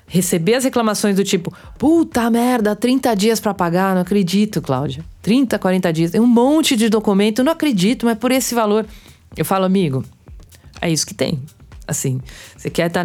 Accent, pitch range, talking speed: Brazilian, 160-215 Hz, 180 wpm